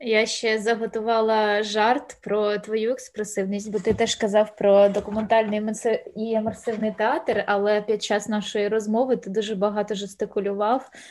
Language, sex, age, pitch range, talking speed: Ukrainian, female, 20-39, 210-240 Hz, 135 wpm